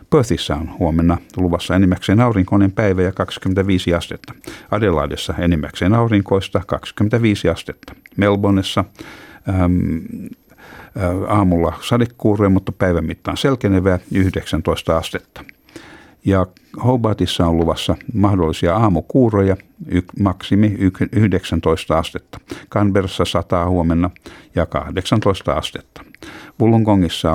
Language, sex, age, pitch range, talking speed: Finnish, male, 60-79, 90-105 Hz, 90 wpm